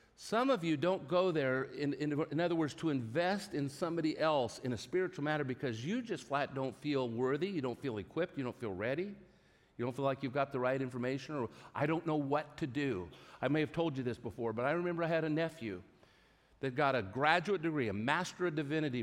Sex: male